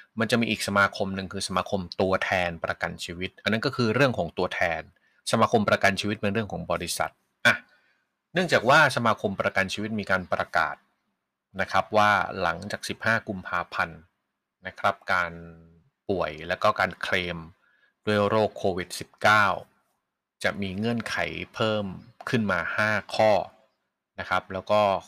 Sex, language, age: male, Thai, 20-39